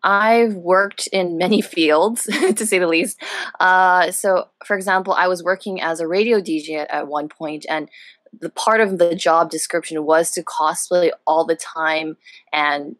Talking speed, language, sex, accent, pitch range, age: 175 wpm, English, female, American, 155-185 Hz, 20-39